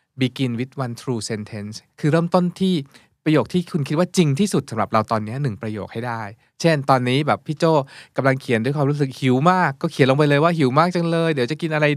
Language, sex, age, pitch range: Thai, male, 20-39, 115-155 Hz